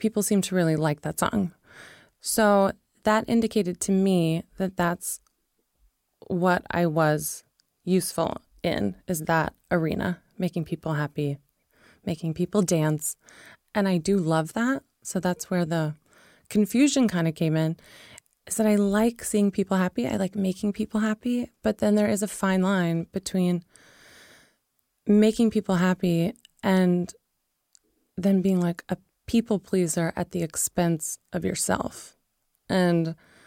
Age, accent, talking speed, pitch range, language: 20-39, American, 140 wpm, 170-210 Hz, English